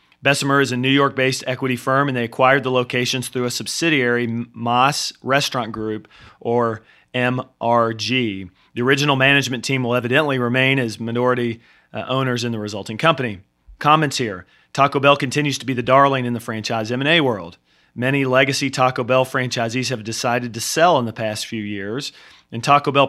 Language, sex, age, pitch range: English, male, 40-59, 120-135 Hz